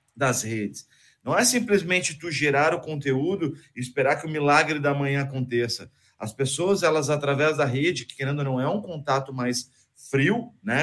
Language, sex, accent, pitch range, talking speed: Portuguese, male, Brazilian, 135-165 Hz, 185 wpm